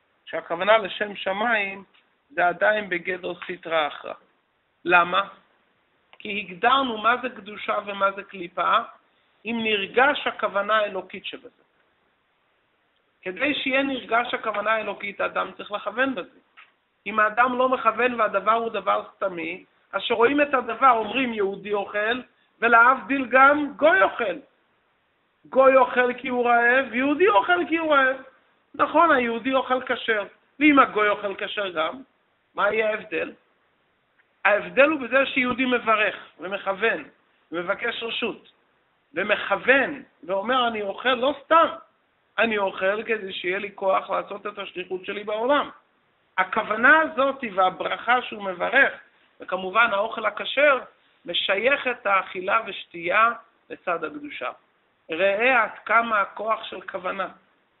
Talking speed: 120 wpm